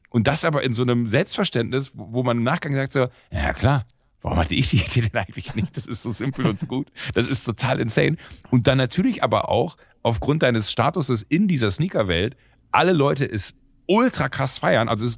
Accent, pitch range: German, 100-130 Hz